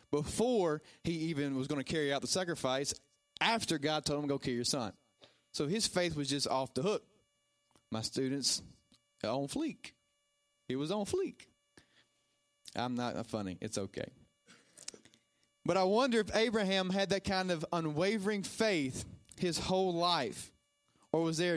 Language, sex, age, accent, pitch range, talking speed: English, male, 30-49, American, 130-180 Hz, 155 wpm